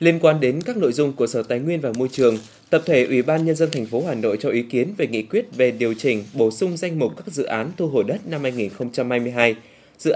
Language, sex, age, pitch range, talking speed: Vietnamese, male, 20-39, 115-160 Hz, 265 wpm